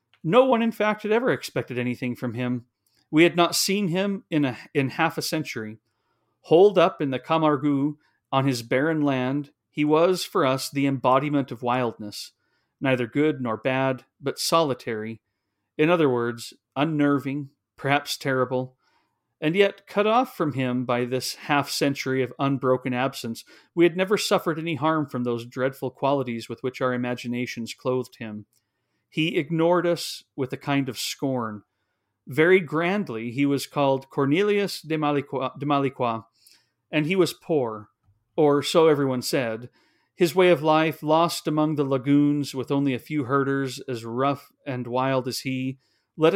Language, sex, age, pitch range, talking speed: English, male, 40-59, 125-155 Hz, 160 wpm